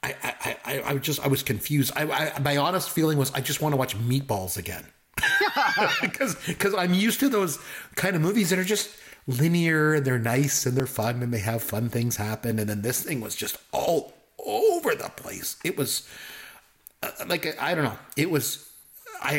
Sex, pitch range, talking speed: male, 115-155 Hz, 200 wpm